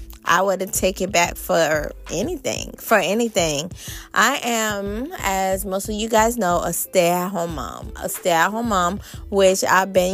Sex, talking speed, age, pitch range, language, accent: female, 155 wpm, 20-39, 175-205 Hz, English, American